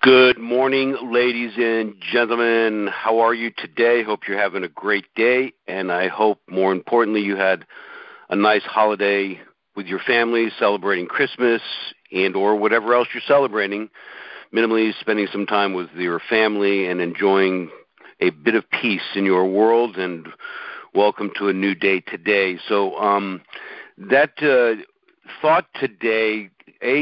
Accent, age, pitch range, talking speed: American, 50-69, 100-115 Hz, 145 wpm